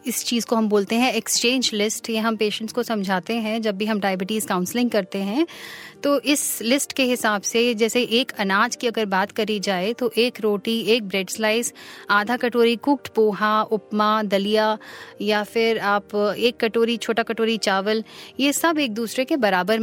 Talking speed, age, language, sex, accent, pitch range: 185 wpm, 30-49, Hindi, female, native, 205-245 Hz